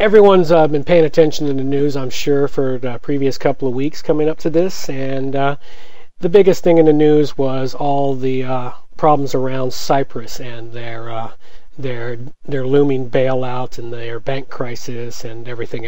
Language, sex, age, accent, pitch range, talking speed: English, male, 40-59, American, 130-165 Hz, 180 wpm